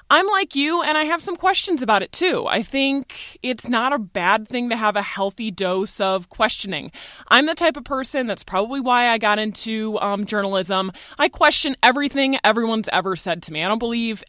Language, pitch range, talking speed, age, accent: English, 195-275 Hz, 205 wpm, 20-39, American